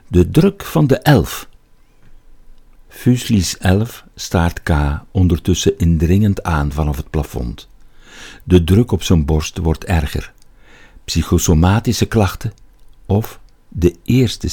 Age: 60-79